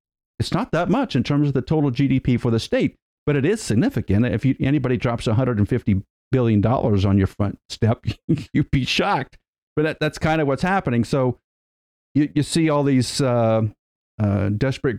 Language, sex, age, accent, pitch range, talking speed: English, male, 50-69, American, 110-150 Hz, 175 wpm